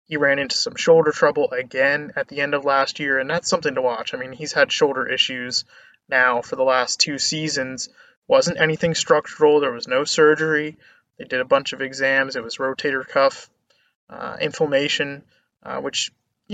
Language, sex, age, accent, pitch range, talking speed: English, male, 20-39, American, 145-190 Hz, 190 wpm